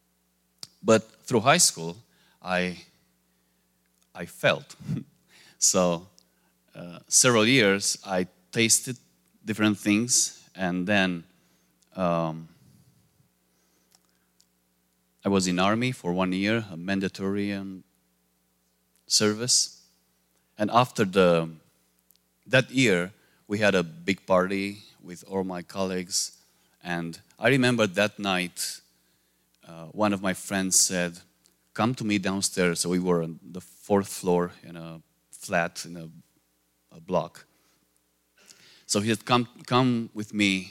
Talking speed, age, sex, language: 115 wpm, 30-49, male, English